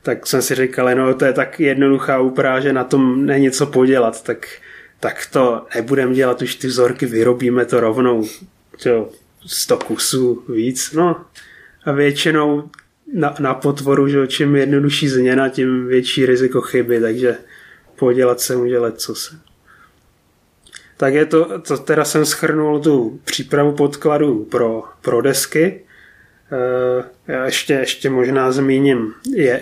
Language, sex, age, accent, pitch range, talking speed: Czech, male, 30-49, native, 125-145 Hz, 140 wpm